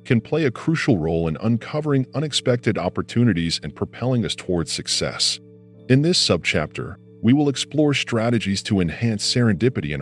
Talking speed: 150 wpm